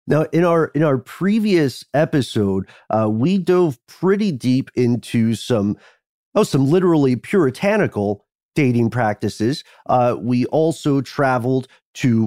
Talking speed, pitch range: 120 wpm, 110-150 Hz